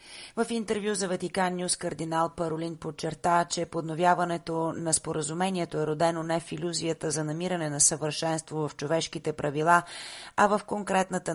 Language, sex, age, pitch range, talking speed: Bulgarian, female, 30-49, 155-180 Hz, 145 wpm